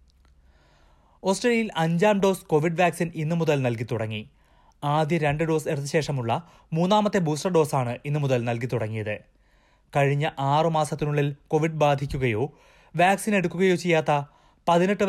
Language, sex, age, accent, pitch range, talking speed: Malayalam, male, 20-39, native, 130-165 Hz, 100 wpm